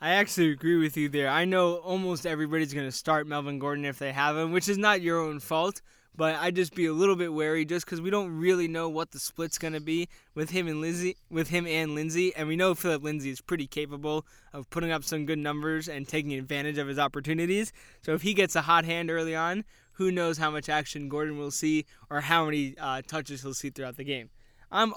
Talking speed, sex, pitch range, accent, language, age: 245 wpm, male, 145-175 Hz, American, English, 20-39